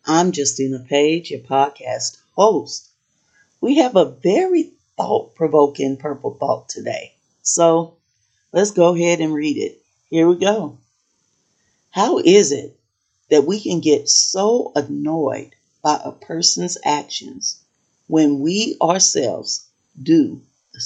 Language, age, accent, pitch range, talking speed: English, 40-59, American, 145-185 Hz, 120 wpm